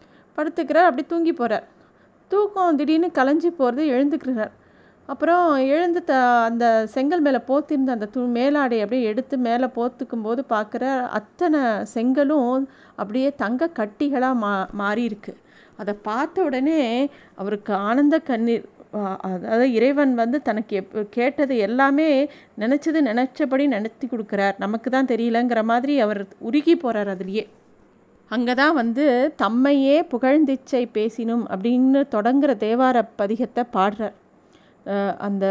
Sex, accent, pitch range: female, native, 215-275 Hz